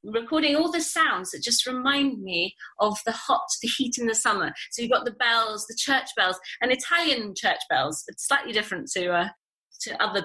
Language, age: English, 30-49